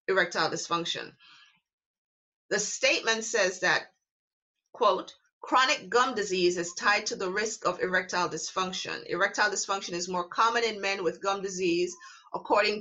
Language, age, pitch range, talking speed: English, 30-49, 185-260 Hz, 135 wpm